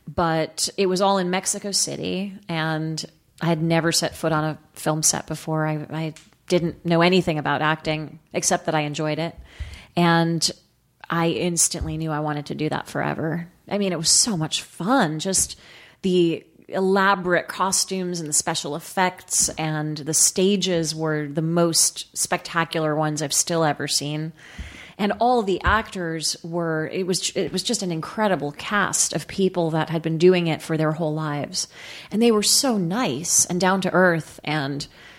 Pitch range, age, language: 155-180 Hz, 30-49, English